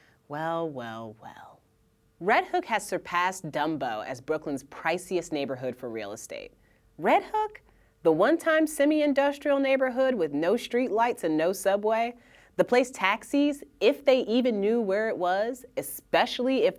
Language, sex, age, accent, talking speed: English, female, 30-49, American, 145 wpm